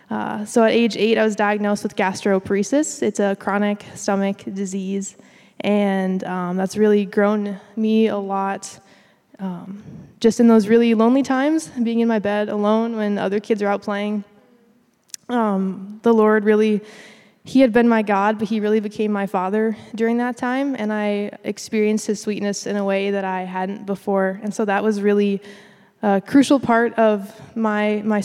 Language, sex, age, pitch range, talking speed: English, female, 20-39, 195-220 Hz, 175 wpm